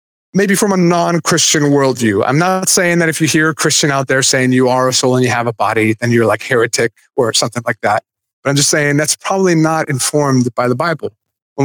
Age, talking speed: 30-49, 235 wpm